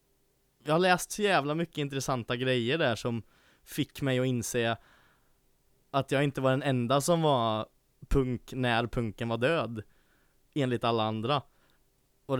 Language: English